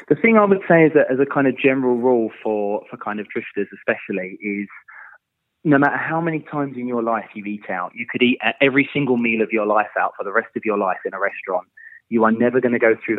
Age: 20-39